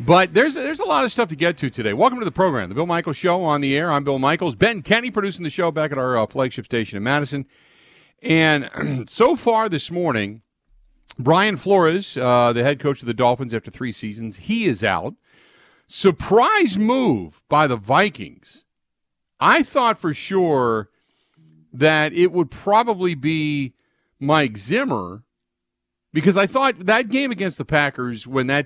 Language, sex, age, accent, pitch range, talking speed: English, male, 50-69, American, 115-170 Hz, 175 wpm